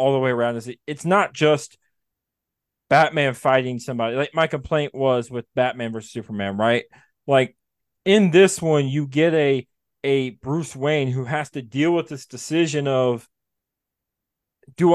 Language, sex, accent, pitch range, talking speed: English, male, American, 130-155 Hz, 160 wpm